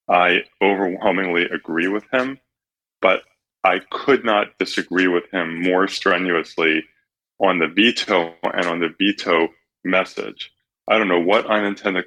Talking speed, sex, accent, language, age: 135 wpm, male, American, English, 30-49